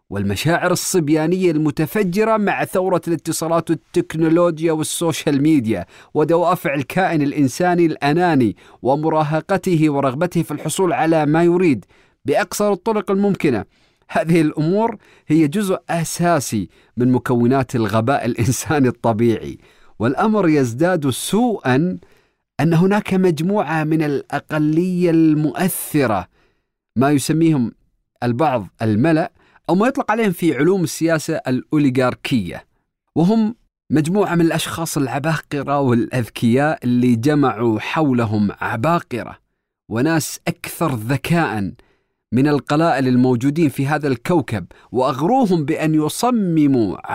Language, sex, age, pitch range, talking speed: Arabic, male, 40-59, 130-175 Hz, 95 wpm